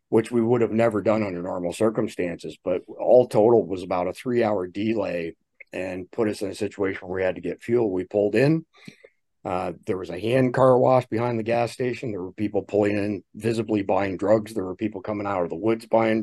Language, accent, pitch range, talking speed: English, American, 90-115 Hz, 225 wpm